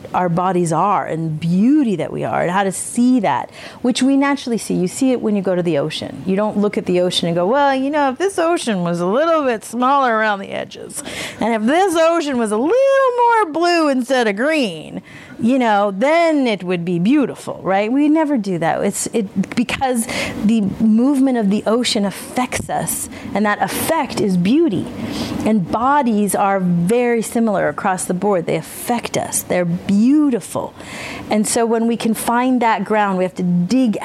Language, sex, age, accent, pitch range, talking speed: English, female, 30-49, American, 185-245 Hz, 195 wpm